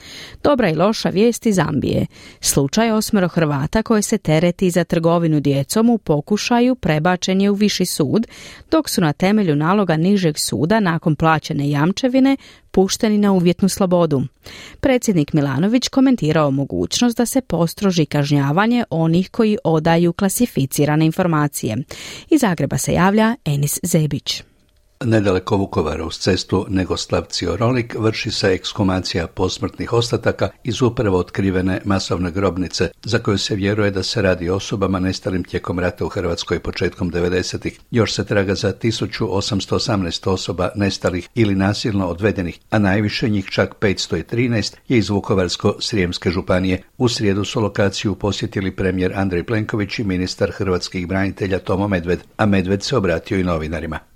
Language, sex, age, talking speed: Croatian, female, 40-59, 135 wpm